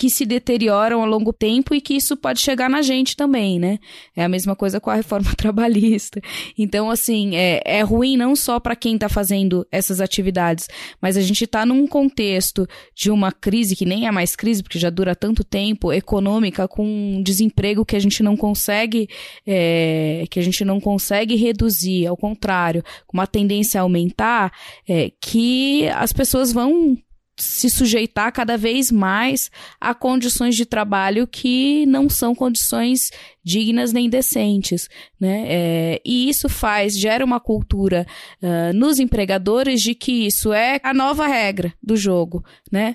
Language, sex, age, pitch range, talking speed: Portuguese, female, 20-39, 190-240 Hz, 170 wpm